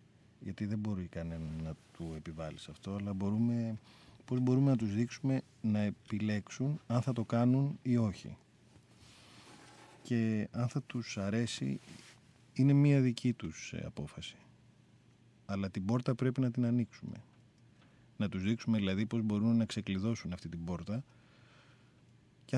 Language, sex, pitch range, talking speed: Greek, male, 100-125 Hz, 140 wpm